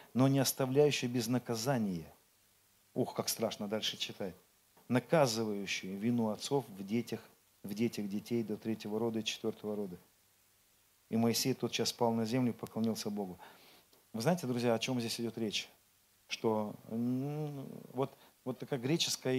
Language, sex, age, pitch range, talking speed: Russian, male, 40-59, 110-145 Hz, 145 wpm